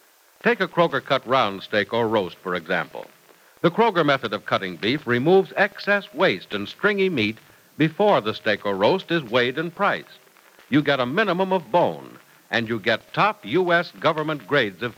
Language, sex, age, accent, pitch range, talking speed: English, male, 60-79, American, 120-180 Hz, 180 wpm